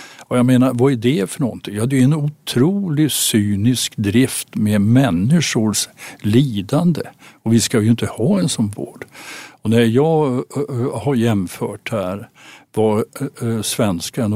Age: 60-79